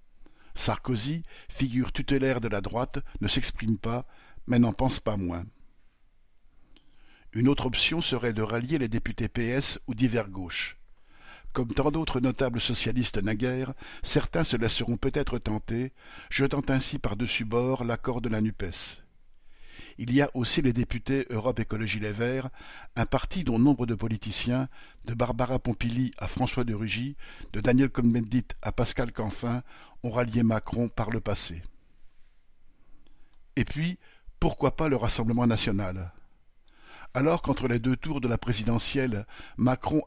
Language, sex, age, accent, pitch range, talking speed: French, male, 60-79, French, 110-130 Hz, 140 wpm